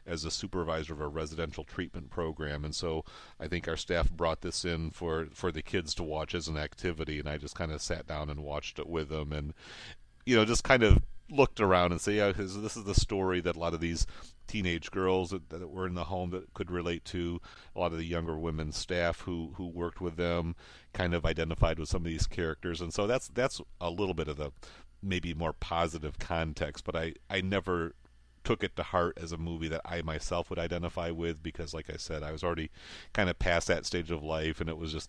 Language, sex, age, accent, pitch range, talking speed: English, male, 40-59, American, 80-90 Hz, 240 wpm